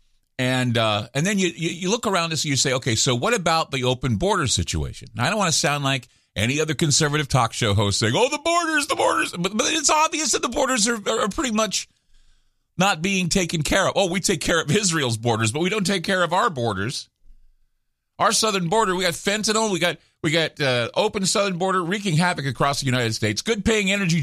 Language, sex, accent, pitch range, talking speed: English, male, American, 125-195 Hz, 235 wpm